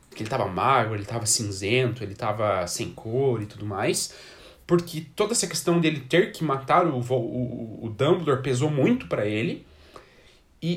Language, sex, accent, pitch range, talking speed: Portuguese, male, Brazilian, 110-155 Hz, 175 wpm